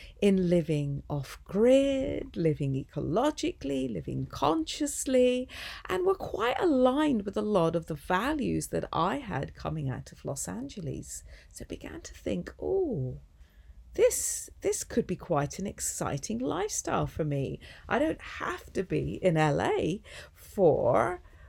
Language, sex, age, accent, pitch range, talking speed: English, female, 40-59, British, 145-230 Hz, 135 wpm